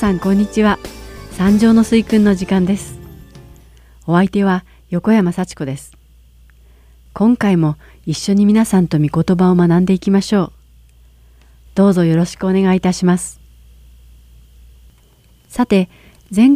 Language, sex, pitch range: Japanese, female, 145-200 Hz